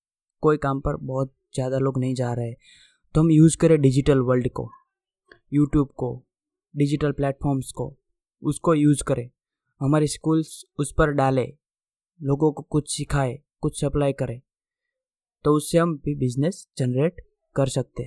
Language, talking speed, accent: English, 150 wpm, Indian